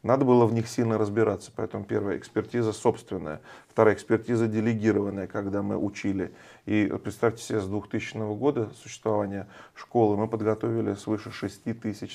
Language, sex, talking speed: English, male, 140 wpm